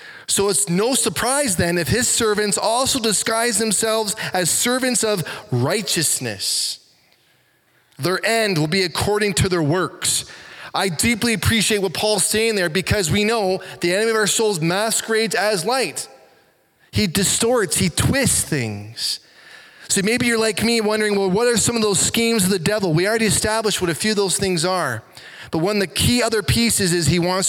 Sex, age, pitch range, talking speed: male, 20-39, 145-210 Hz, 180 wpm